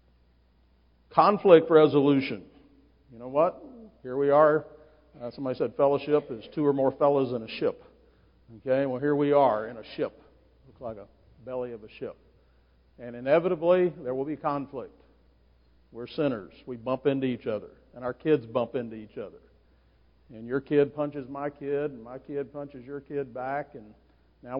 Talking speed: 170 wpm